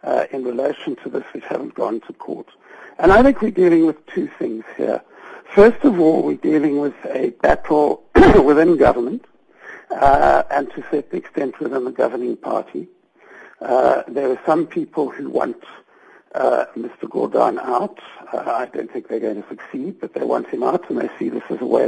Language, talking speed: English, 190 wpm